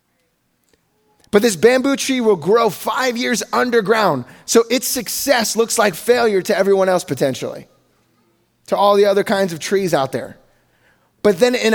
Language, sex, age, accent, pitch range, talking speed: English, male, 20-39, American, 190-235 Hz, 160 wpm